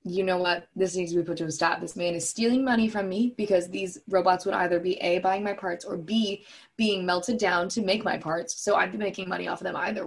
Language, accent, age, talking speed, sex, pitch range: English, American, 20-39, 275 wpm, female, 175-215 Hz